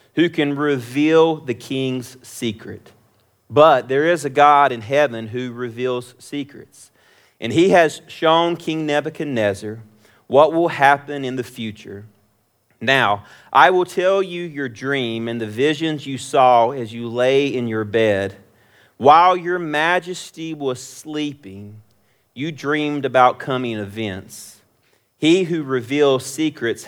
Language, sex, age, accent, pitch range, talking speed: English, male, 40-59, American, 115-150 Hz, 135 wpm